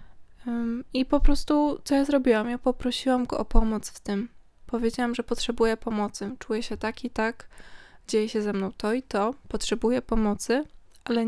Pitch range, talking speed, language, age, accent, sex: 215-245 Hz, 170 wpm, Polish, 20-39, native, female